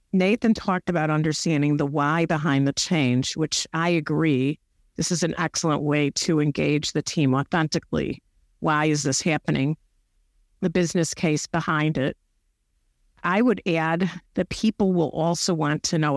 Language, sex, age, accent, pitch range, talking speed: English, female, 50-69, American, 140-170 Hz, 150 wpm